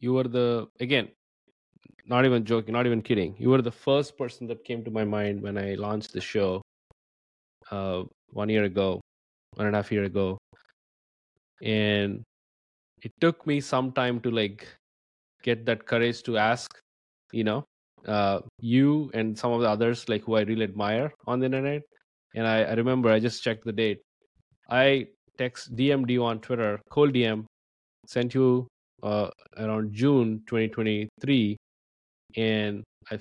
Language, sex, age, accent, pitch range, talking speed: English, male, 20-39, Indian, 105-120 Hz, 155 wpm